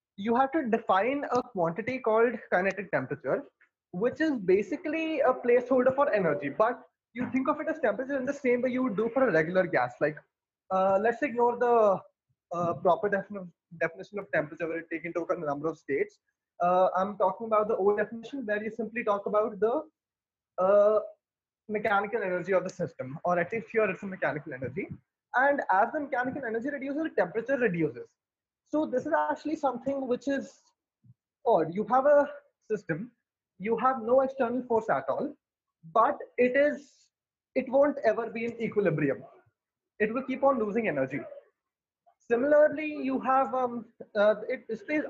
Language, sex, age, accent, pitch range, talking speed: English, male, 20-39, Indian, 195-275 Hz, 170 wpm